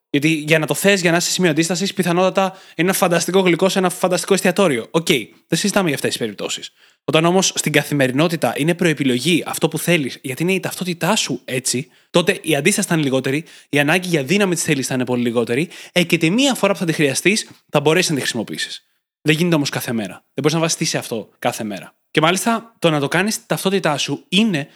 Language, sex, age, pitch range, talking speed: Greek, male, 20-39, 145-180 Hz, 230 wpm